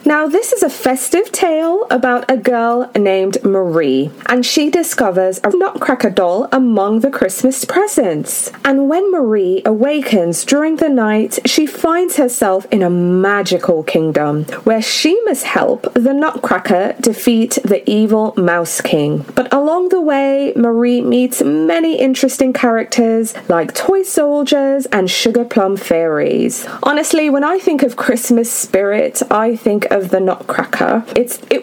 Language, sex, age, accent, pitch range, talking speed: English, female, 20-39, British, 205-310 Hz, 145 wpm